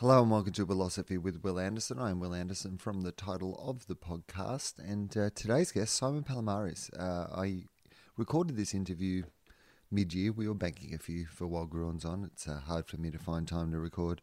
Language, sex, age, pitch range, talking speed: English, male, 30-49, 90-110 Hz, 205 wpm